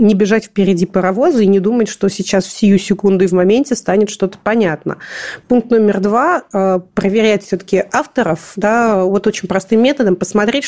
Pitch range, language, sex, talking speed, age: 190-225 Hz, Russian, female, 175 wpm, 30-49